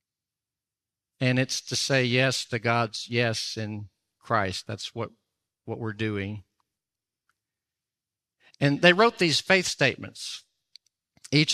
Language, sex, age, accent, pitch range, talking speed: English, male, 50-69, American, 125-165 Hz, 115 wpm